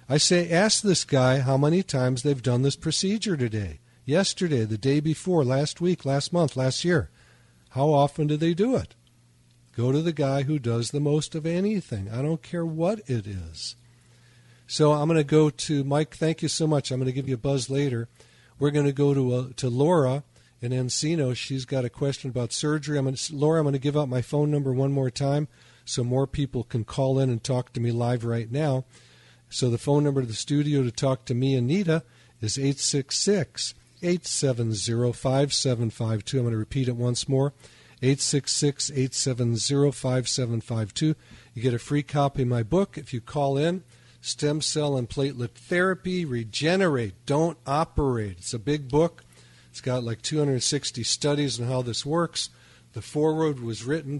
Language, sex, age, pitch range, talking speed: English, male, 50-69, 120-150 Hz, 185 wpm